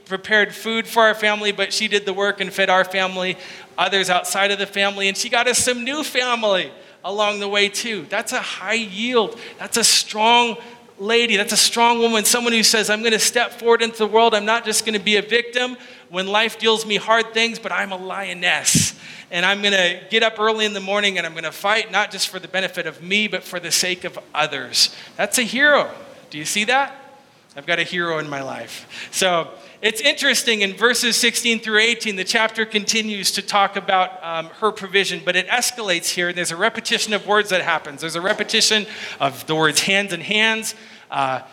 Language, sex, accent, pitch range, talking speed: English, male, American, 185-225 Hz, 220 wpm